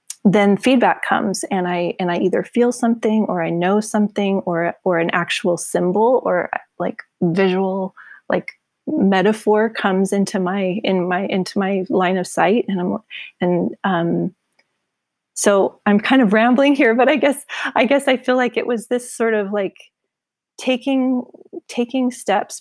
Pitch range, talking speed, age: 180-215 Hz, 160 wpm, 30-49